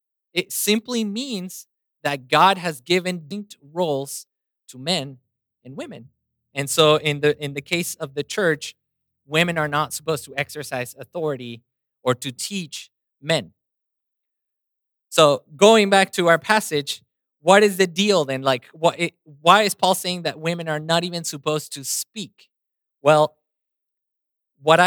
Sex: male